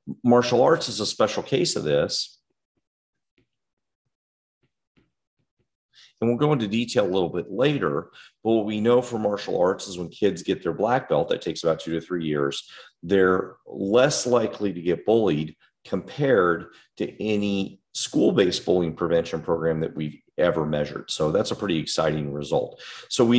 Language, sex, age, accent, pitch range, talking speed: English, male, 40-59, American, 85-115 Hz, 160 wpm